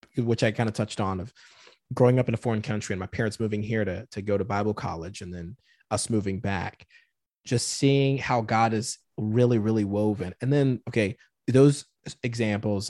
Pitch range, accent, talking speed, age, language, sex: 105-125 Hz, American, 195 wpm, 20-39, English, male